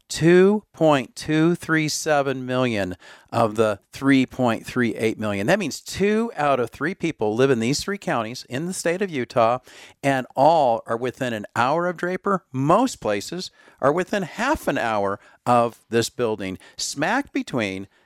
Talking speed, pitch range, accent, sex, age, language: 140 wpm, 115-160 Hz, American, male, 50-69, English